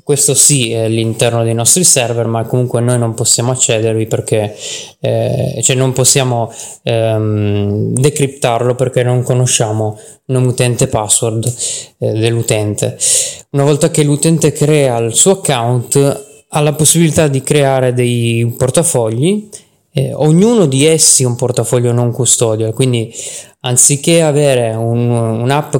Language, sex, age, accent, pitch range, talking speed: Italian, male, 20-39, native, 120-150 Hz, 135 wpm